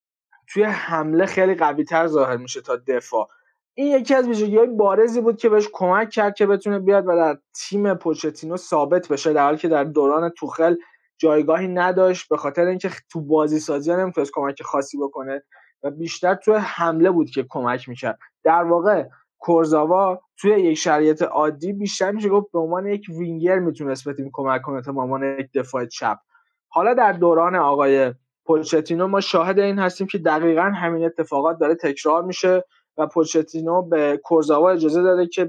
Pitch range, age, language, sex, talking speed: 155-195 Hz, 20-39, Persian, male, 170 wpm